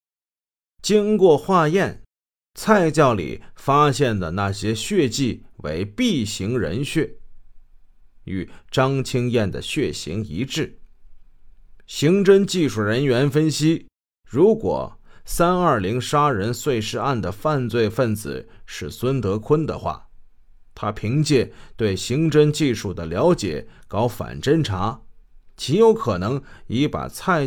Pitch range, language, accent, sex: 105-155 Hz, Chinese, native, male